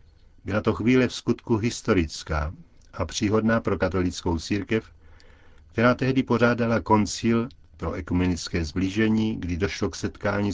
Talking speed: 125 wpm